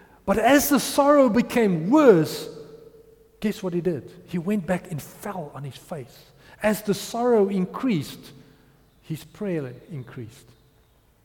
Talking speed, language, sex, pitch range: 135 wpm, English, male, 165-225 Hz